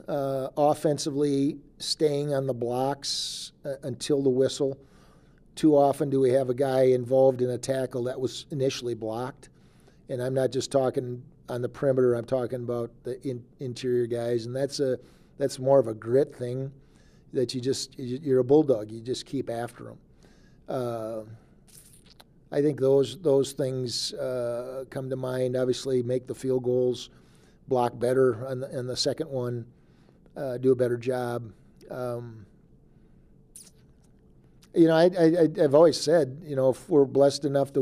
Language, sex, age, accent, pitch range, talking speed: English, male, 50-69, American, 125-140 Hz, 155 wpm